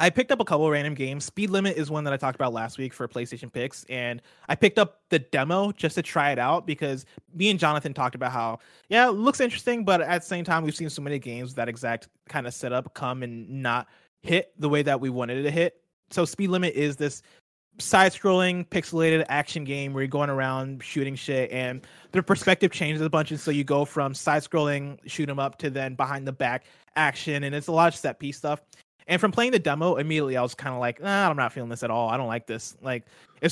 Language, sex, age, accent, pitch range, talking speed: English, male, 20-39, American, 130-170 Hz, 250 wpm